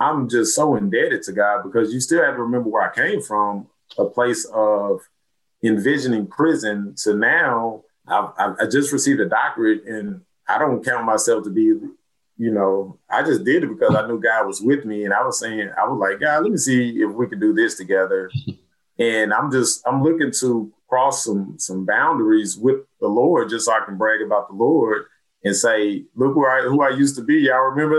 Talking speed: 210 wpm